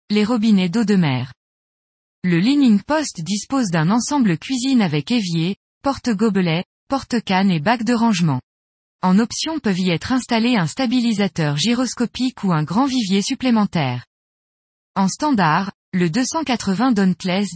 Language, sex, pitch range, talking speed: French, female, 180-245 Hz, 135 wpm